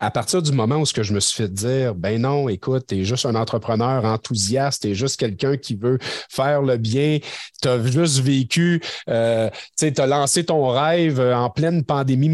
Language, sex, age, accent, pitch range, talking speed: French, male, 50-69, Canadian, 110-140 Hz, 210 wpm